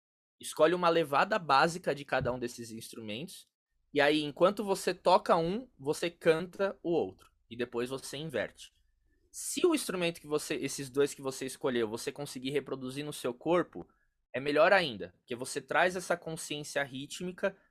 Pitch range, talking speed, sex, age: 130-180 Hz, 165 wpm, male, 20-39